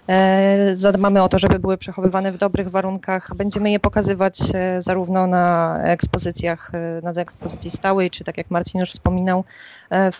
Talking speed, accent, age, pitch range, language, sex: 145 wpm, native, 20-39, 180-205 Hz, Polish, female